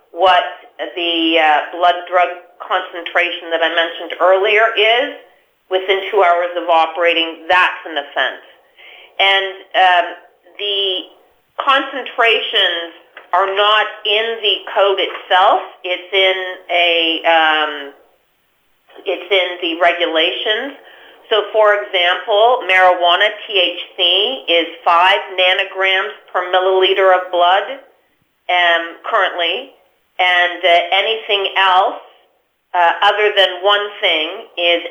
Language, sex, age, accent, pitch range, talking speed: English, female, 40-59, American, 170-195 Hz, 105 wpm